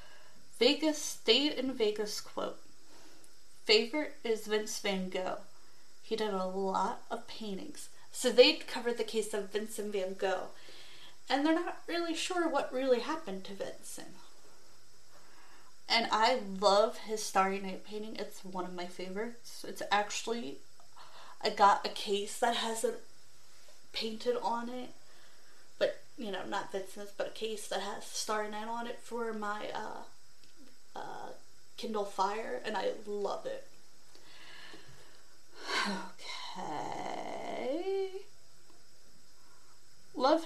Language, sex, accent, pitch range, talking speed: English, female, American, 205-285 Hz, 125 wpm